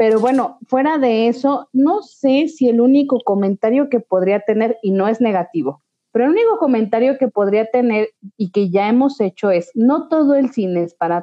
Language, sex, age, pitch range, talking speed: Spanish, female, 30-49, 200-255 Hz, 200 wpm